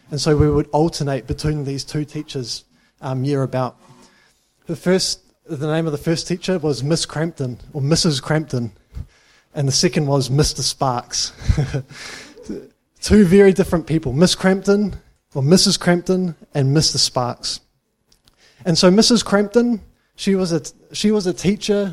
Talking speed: 155 wpm